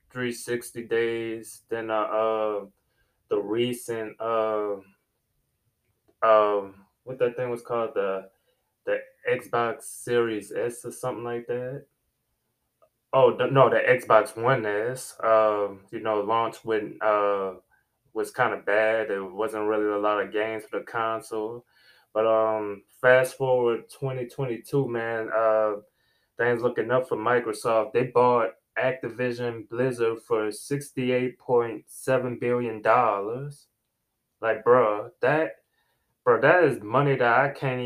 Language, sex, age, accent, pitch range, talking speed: English, male, 20-39, American, 110-125 Hz, 130 wpm